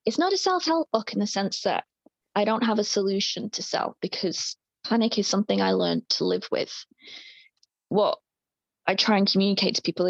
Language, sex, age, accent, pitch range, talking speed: English, female, 20-39, British, 185-225 Hz, 190 wpm